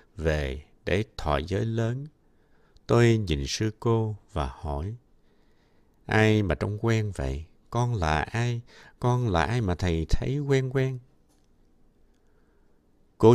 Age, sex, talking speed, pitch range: 60-79, male, 125 wpm, 80-120 Hz